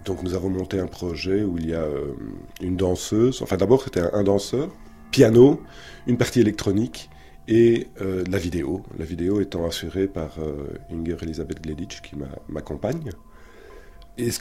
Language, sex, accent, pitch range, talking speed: French, male, French, 80-110 Hz, 170 wpm